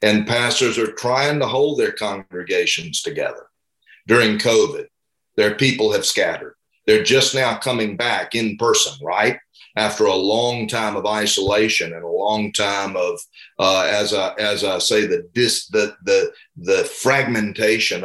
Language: English